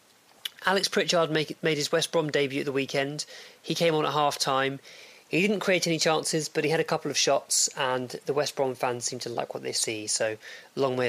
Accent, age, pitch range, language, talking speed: British, 20-39, 130-160 Hz, English, 220 wpm